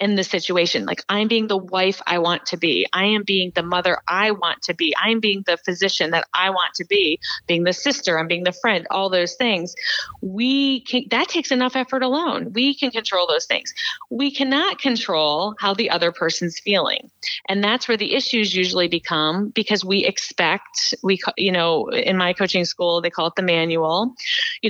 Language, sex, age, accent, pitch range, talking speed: English, female, 30-49, American, 180-240 Hz, 205 wpm